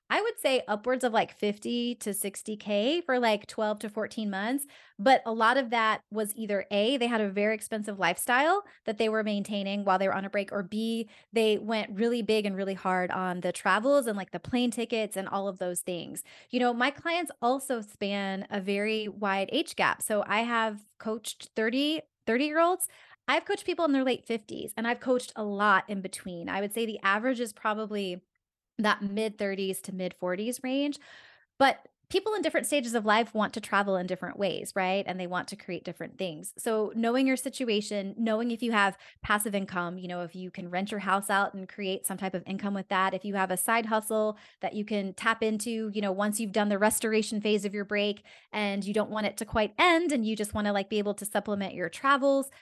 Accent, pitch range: American, 200-240 Hz